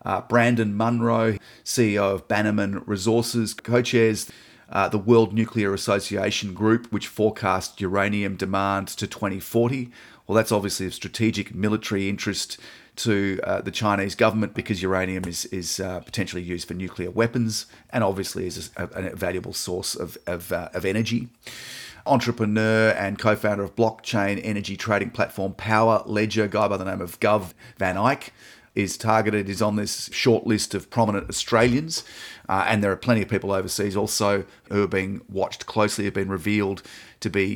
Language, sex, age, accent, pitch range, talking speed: English, male, 30-49, Australian, 100-110 Hz, 165 wpm